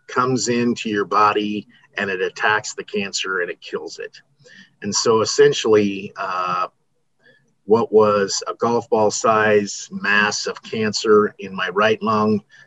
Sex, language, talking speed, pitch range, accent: male, English, 140 wpm, 100-130 Hz, American